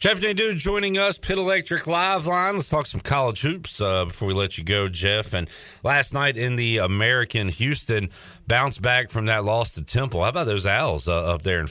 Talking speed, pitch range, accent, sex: 215 wpm, 95-120 Hz, American, male